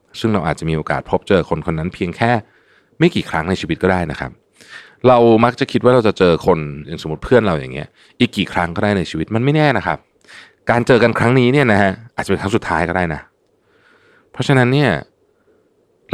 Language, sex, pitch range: Thai, male, 75-110 Hz